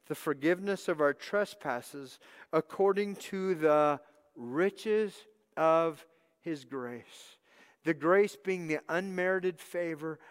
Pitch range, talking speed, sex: 140-175 Hz, 105 wpm, male